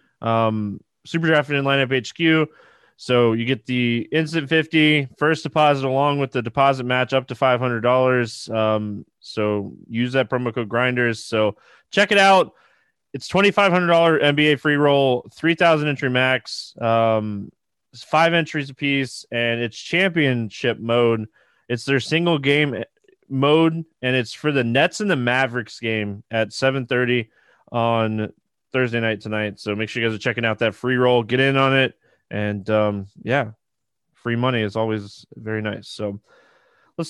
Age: 20-39